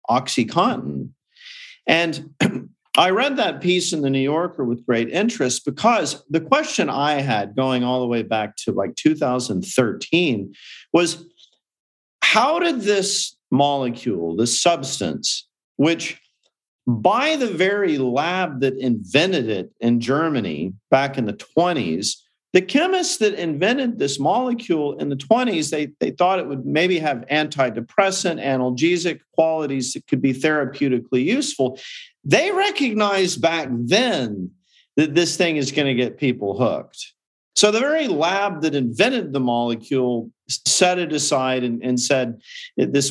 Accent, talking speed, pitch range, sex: American, 140 wpm, 130-185 Hz, male